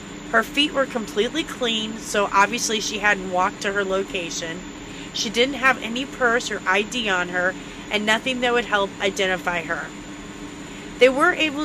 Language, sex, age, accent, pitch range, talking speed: English, female, 30-49, American, 185-230 Hz, 165 wpm